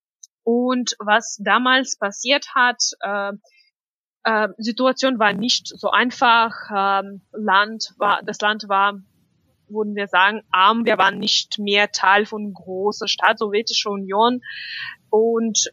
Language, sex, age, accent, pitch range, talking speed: German, female, 20-39, German, 205-245 Hz, 125 wpm